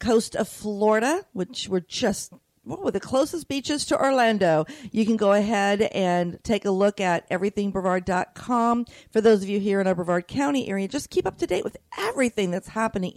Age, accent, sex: 50-69, American, female